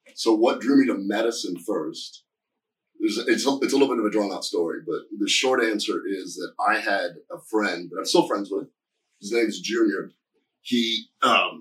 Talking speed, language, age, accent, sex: 205 wpm, English, 30-49, American, male